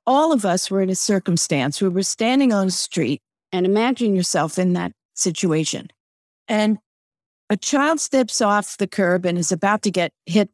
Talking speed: 180 wpm